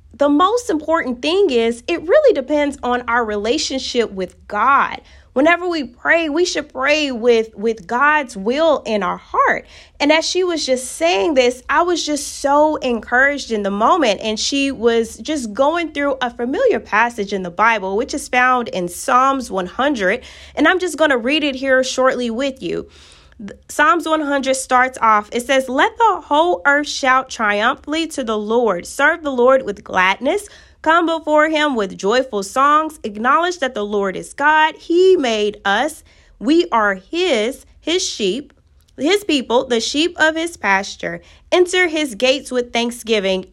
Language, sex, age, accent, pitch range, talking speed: English, female, 20-39, American, 225-310 Hz, 170 wpm